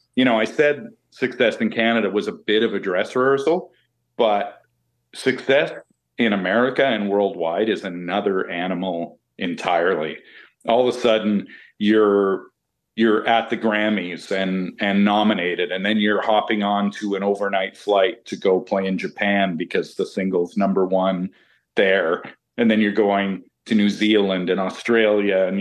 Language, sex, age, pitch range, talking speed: English, male, 40-59, 100-120 Hz, 155 wpm